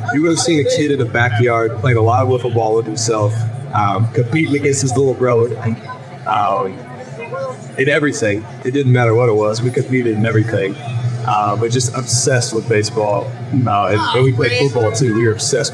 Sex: male